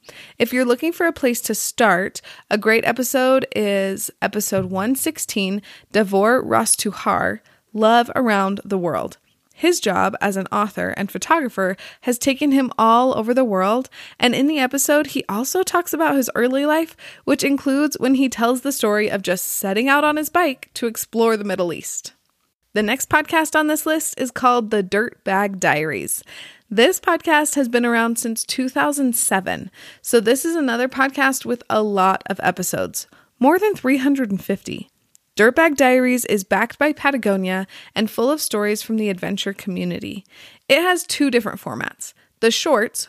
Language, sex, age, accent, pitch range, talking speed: English, female, 20-39, American, 210-280 Hz, 165 wpm